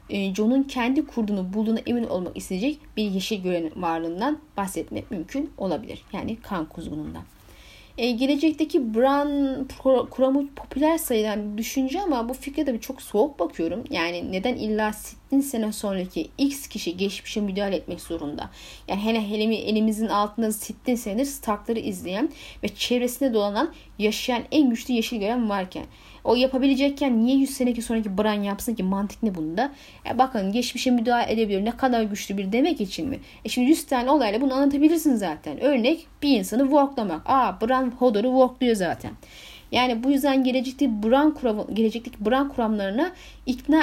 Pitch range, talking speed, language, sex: 205-275 Hz, 155 wpm, Turkish, female